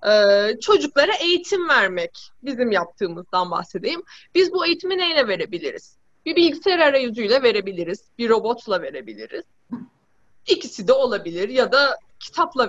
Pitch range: 215-325 Hz